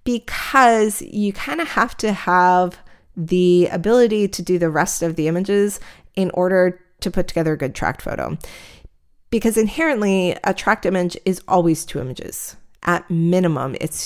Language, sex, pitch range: English, female, 160-190 Hz